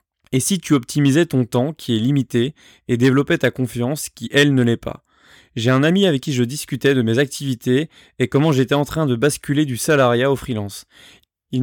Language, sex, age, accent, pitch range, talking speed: French, male, 20-39, French, 120-145 Hz, 205 wpm